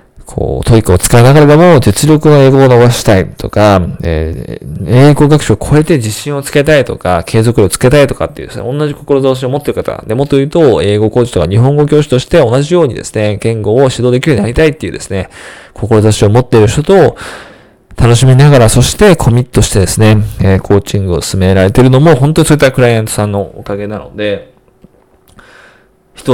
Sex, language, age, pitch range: male, Japanese, 20-39, 100-135 Hz